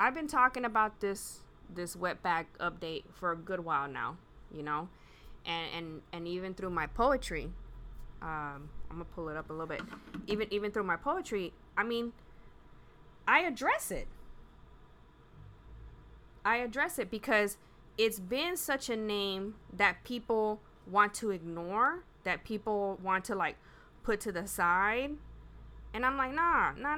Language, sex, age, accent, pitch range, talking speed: English, female, 20-39, American, 170-240 Hz, 155 wpm